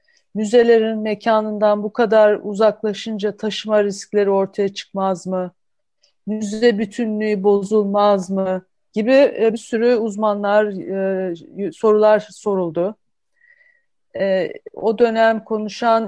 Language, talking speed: Turkish, 85 wpm